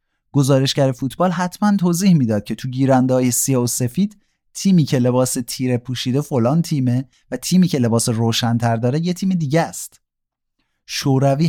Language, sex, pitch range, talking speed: Persian, male, 110-150 Hz, 150 wpm